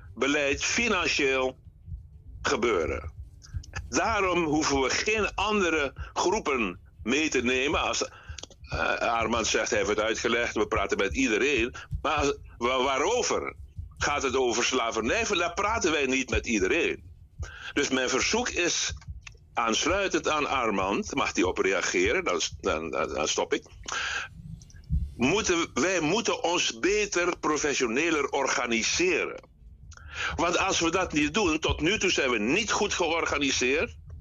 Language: Dutch